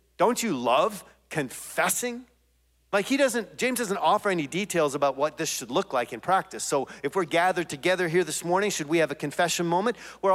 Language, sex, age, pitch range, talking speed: English, male, 40-59, 140-190 Hz, 205 wpm